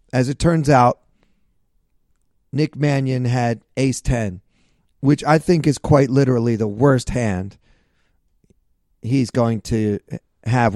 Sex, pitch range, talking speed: male, 105-135 Hz, 115 wpm